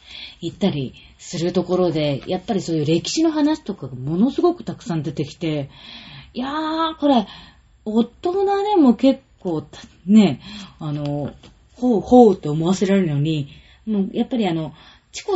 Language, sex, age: Japanese, female, 20-39